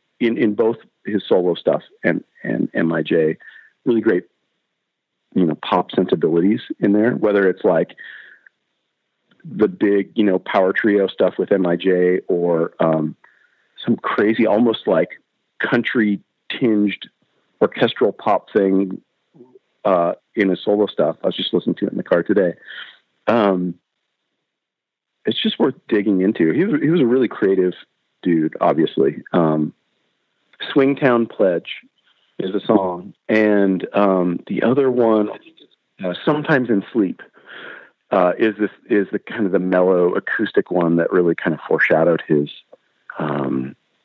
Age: 40-59